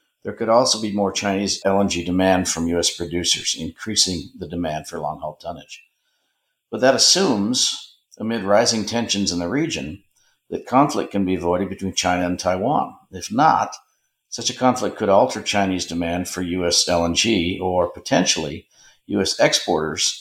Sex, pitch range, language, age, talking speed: male, 85-105 Hz, English, 50-69, 150 wpm